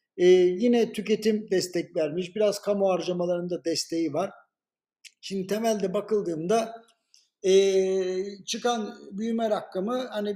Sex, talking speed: male, 105 wpm